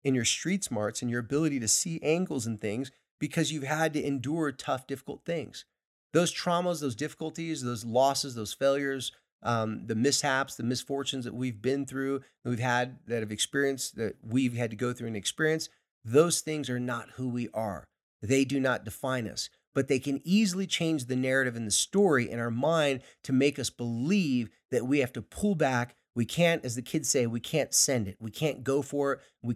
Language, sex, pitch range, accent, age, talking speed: English, male, 120-155 Hz, American, 30-49, 205 wpm